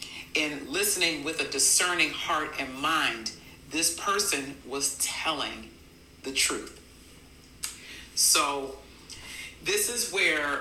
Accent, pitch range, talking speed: American, 140-170 Hz, 100 wpm